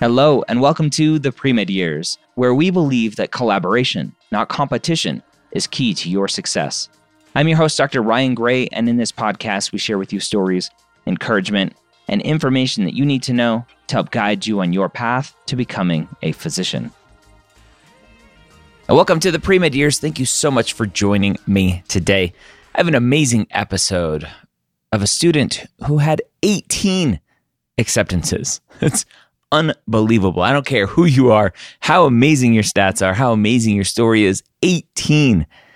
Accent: American